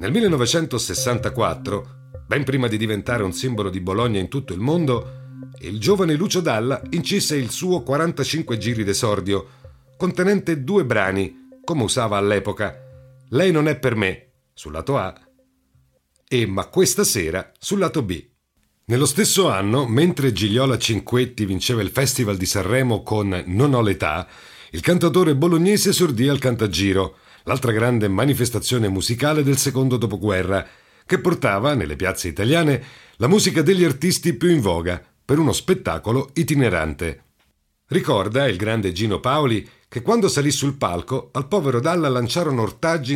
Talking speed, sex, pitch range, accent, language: 145 wpm, male, 100-150 Hz, native, Italian